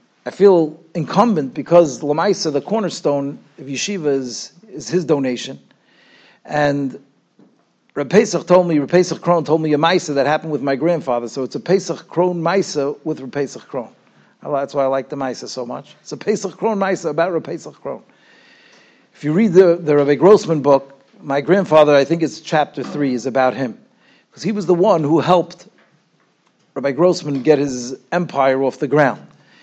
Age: 50-69